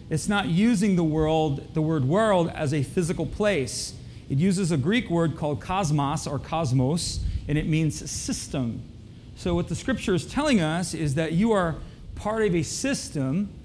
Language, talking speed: English, 175 wpm